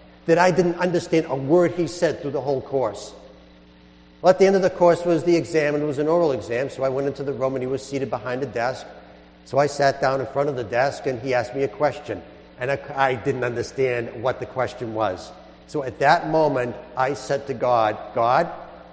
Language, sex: English, male